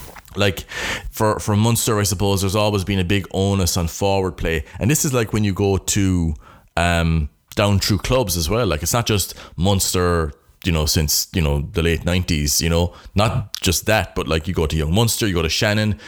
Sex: male